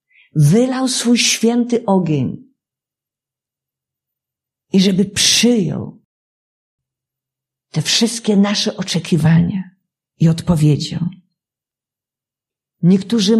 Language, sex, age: Polish, female, 50-69